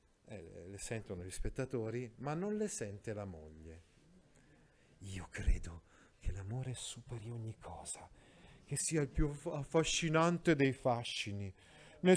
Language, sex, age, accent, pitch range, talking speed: Italian, male, 40-59, native, 110-165 Hz, 130 wpm